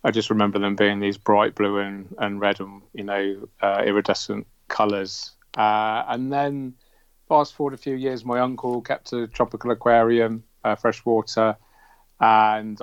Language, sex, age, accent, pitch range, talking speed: English, male, 40-59, British, 105-125 Hz, 155 wpm